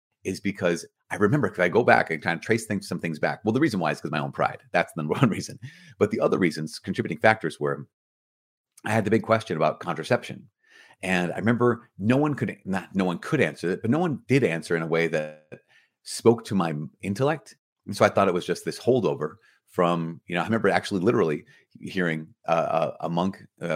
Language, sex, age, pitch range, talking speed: English, male, 30-49, 85-110 Hz, 225 wpm